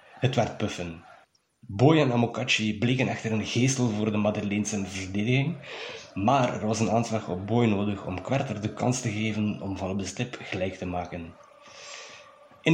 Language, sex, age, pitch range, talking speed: Dutch, male, 20-39, 100-125 Hz, 175 wpm